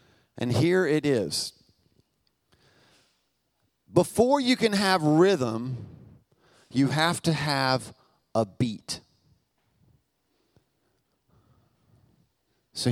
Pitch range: 130-170 Hz